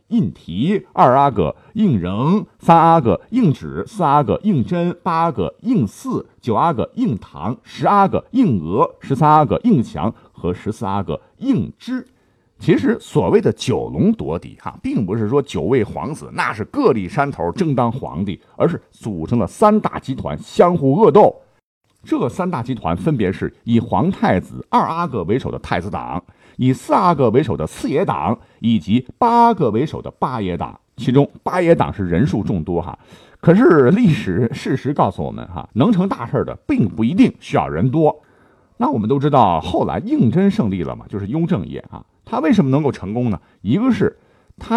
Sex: male